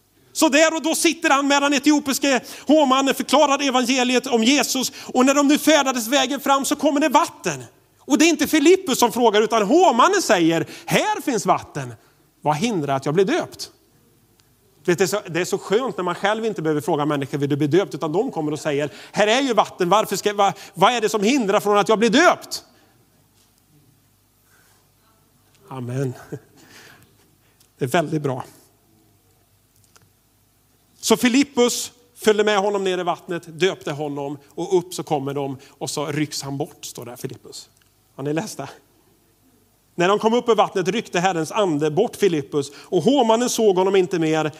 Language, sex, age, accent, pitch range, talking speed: Swedish, male, 30-49, native, 140-225 Hz, 170 wpm